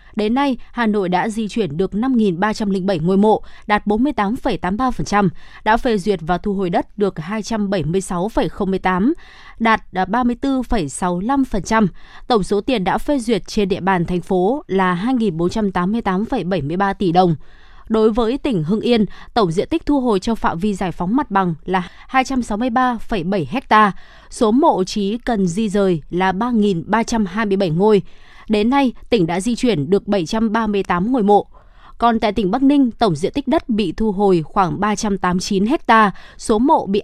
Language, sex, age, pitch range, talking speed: Vietnamese, female, 20-39, 190-235 Hz, 170 wpm